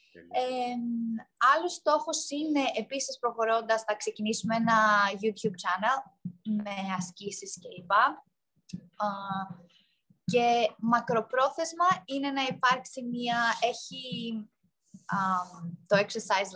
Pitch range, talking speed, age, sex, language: 195-265 Hz, 80 wpm, 20-39, female, Greek